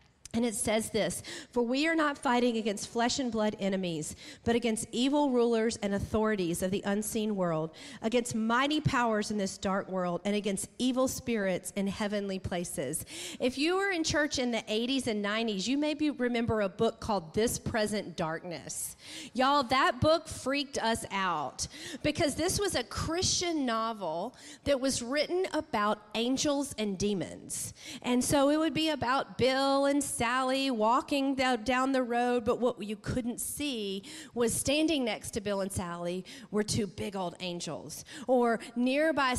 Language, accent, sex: English, American, female